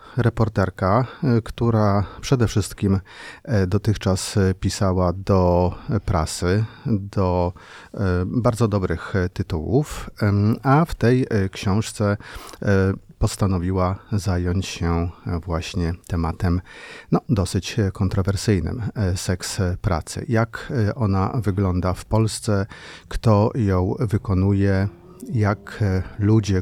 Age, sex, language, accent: 30-49, male, Polish, native